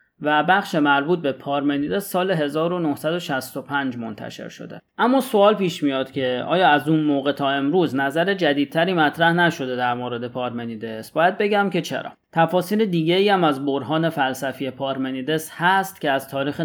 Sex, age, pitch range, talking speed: male, 30-49, 135-180 Hz, 150 wpm